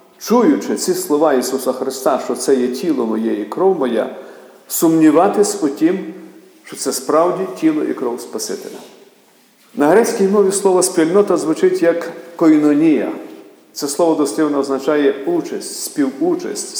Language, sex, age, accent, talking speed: Ukrainian, male, 50-69, native, 130 wpm